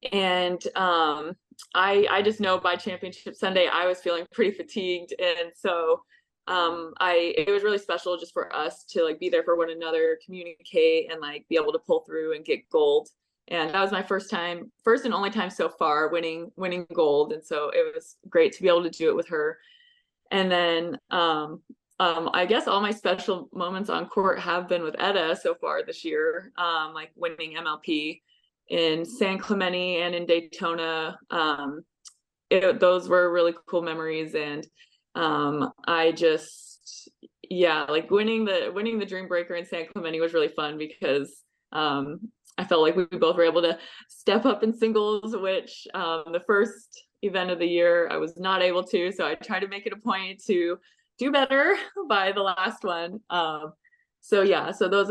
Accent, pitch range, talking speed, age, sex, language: American, 165-215 Hz, 190 wpm, 20-39, female, English